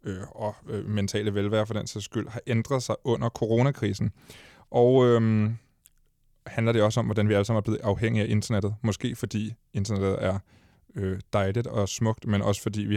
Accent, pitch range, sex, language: native, 100-120 Hz, male, Danish